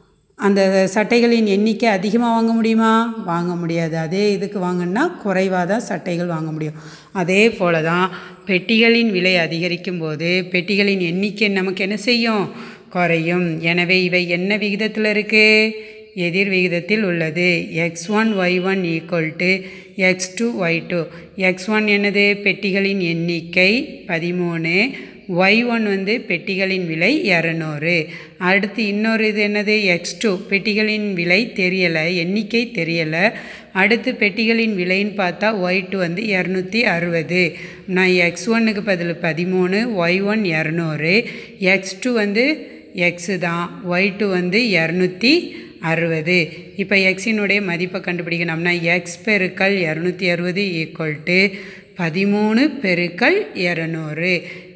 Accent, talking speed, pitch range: native, 115 wpm, 175-210 Hz